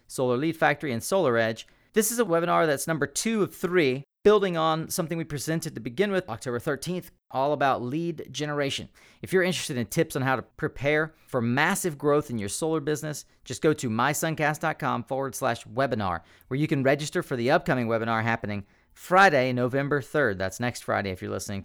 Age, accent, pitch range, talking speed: 40-59, American, 120-160 Hz, 195 wpm